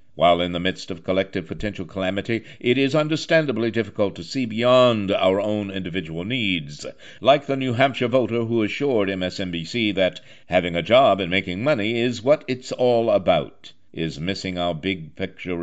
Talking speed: 170 wpm